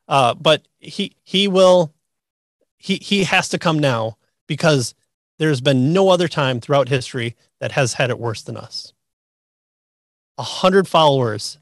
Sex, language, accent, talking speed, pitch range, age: male, English, American, 150 wpm, 125-160 Hz, 30-49